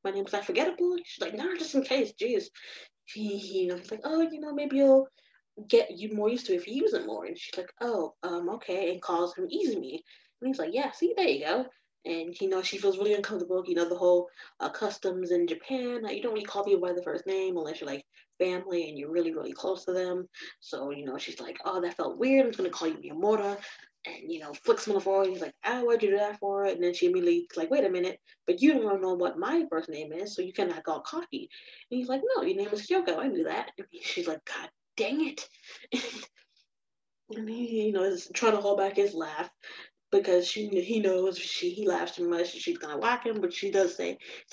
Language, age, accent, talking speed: English, 20-39, American, 260 wpm